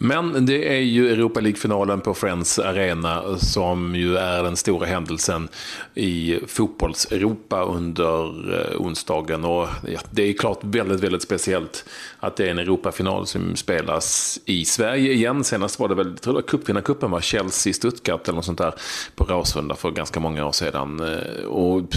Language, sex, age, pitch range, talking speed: Swedish, male, 30-49, 85-100 Hz, 170 wpm